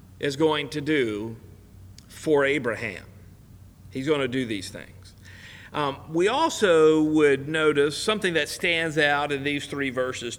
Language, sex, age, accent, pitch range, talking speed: English, male, 50-69, American, 100-150 Hz, 140 wpm